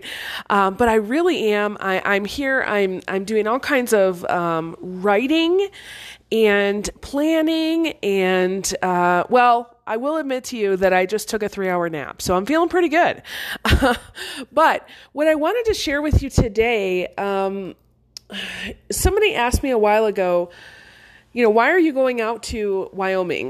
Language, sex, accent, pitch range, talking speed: English, female, American, 195-265 Hz, 160 wpm